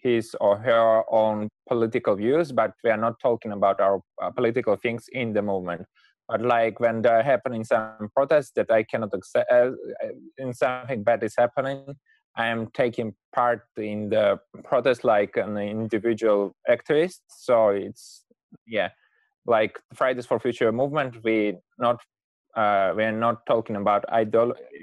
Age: 20-39